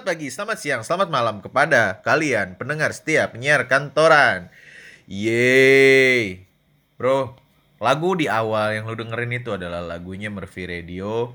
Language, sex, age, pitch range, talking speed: Indonesian, male, 20-39, 105-125 Hz, 130 wpm